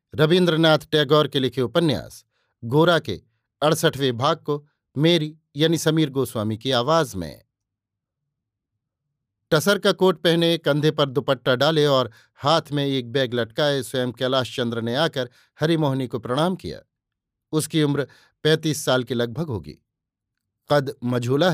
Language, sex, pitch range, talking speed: Hindi, male, 125-160 Hz, 135 wpm